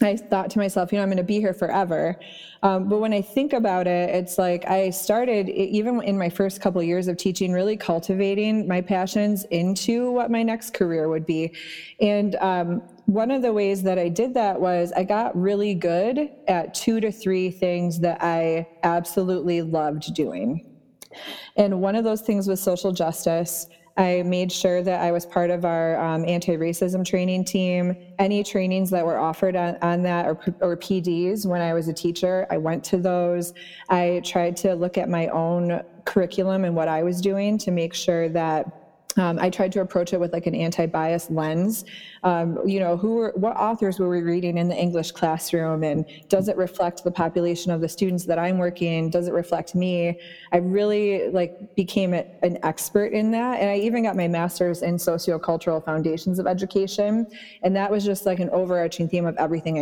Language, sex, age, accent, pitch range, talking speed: English, female, 20-39, American, 170-195 Hz, 195 wpm